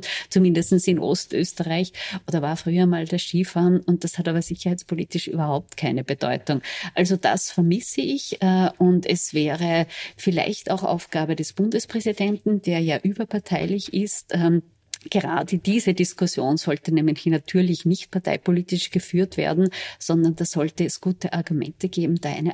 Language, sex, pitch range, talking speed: German, female, 160-185 Hz, 140 wpm